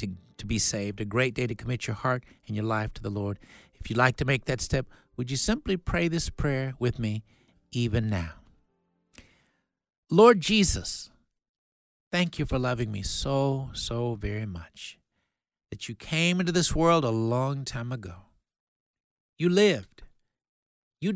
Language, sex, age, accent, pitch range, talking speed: English, male, 60-79, American, 110-160 Hz, 165 wpm